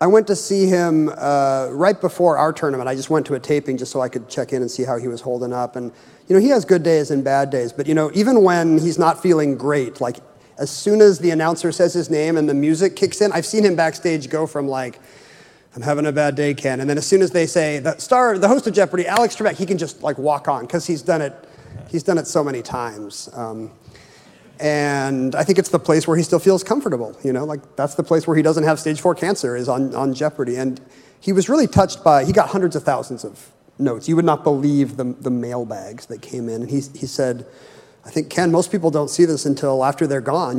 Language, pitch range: English, 135-170 Hz